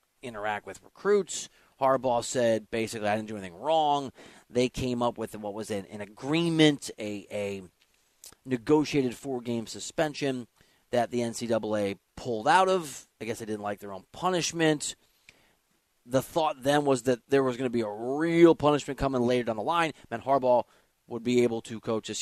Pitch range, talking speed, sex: 110-145 Hz, 175 wpm, male